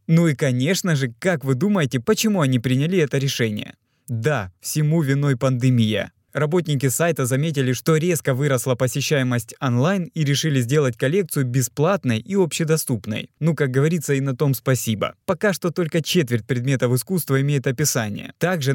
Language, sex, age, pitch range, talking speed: Russian, male, 20-39, 125-155 Hz, 150 wpm